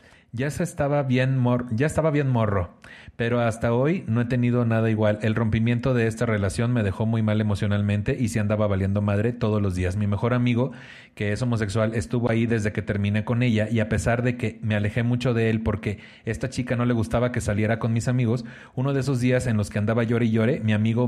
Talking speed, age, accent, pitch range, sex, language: 235 wpm, 30-49, Mexican, 110-130 Hz, male, Spanish